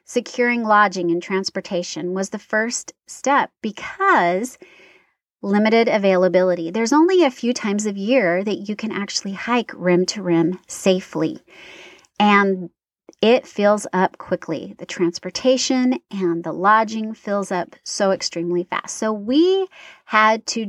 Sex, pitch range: female, 185-240 Hz